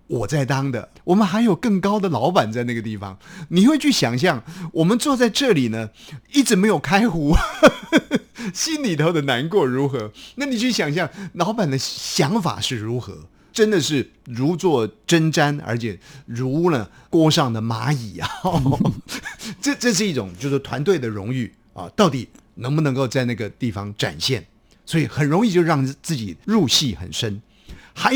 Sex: male